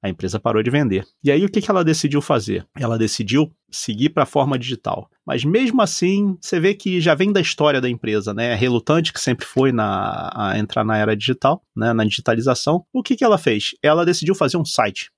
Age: 30-49